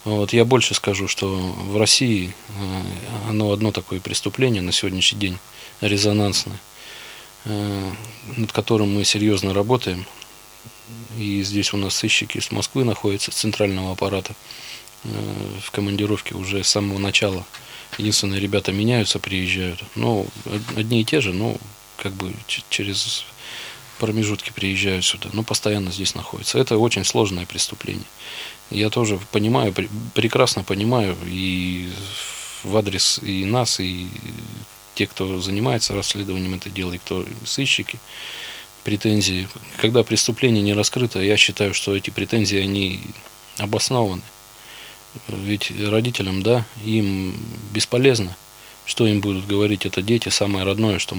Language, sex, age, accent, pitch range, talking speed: Russian, male, 20-39, native, 95-110 Hz, 125 wpm